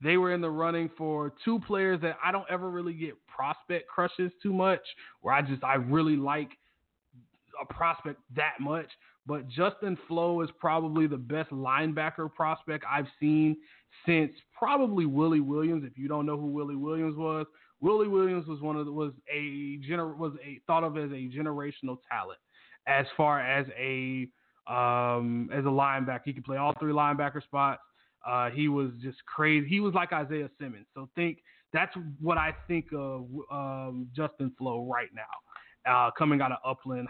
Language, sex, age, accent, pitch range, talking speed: English, male, 20-39, American, 130-160 Hz, 175 wpm